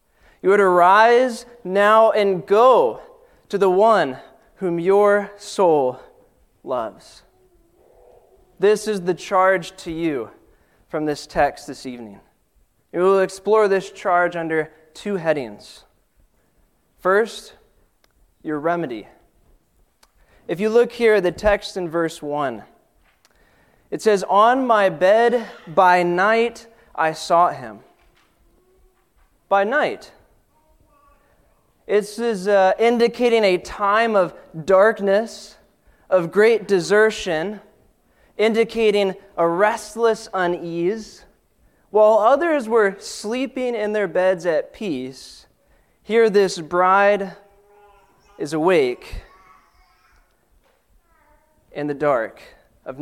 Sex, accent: male, American